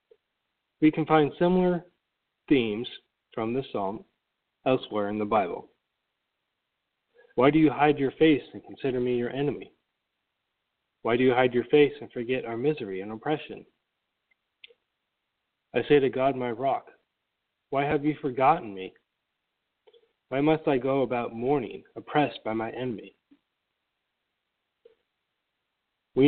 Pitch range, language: 115-150 Hz, English